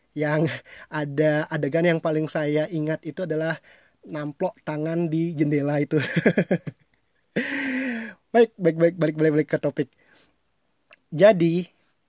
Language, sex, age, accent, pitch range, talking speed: Indonesian, male, 20-39, native, 145-180 Hz, 125 wpm